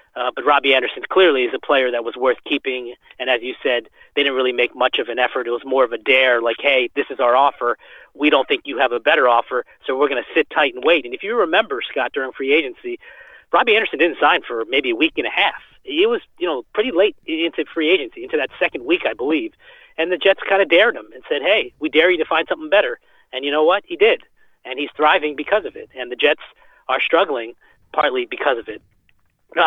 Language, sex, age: English, male, 30-49